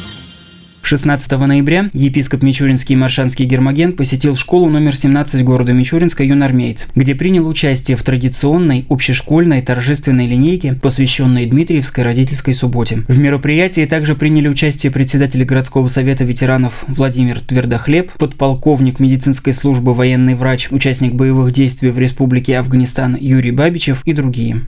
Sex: male